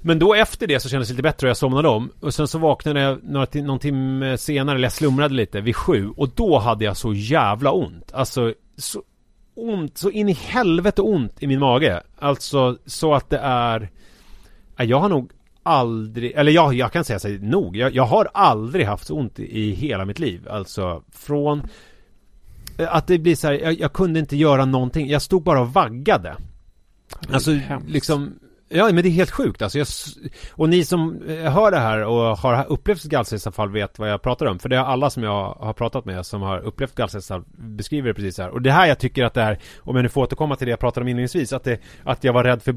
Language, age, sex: English, 30-49, male